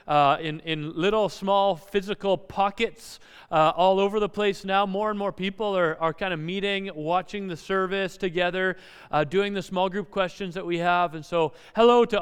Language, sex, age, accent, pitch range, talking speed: Russian, male, 30-49, American, 160-195 Hz, 190 wpm